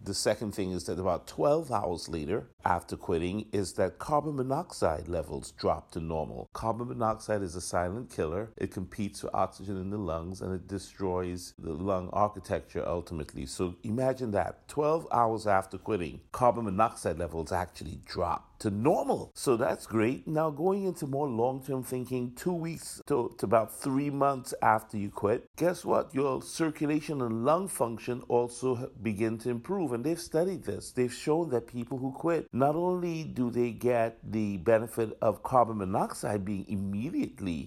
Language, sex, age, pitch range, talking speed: English, male, 50-69, 95-130 Hz, 165 wpm